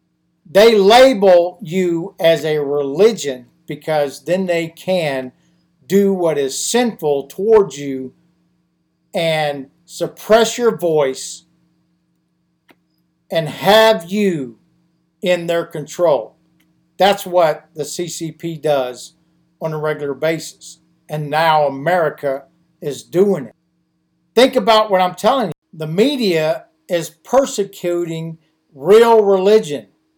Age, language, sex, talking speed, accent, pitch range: 50-69, English, male, 105 wpm, American, 155-195 Hz